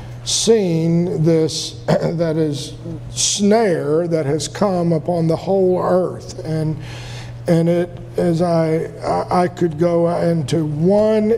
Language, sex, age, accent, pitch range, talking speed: English, male, 50-69, American, 155-195 Hz, 115 wpm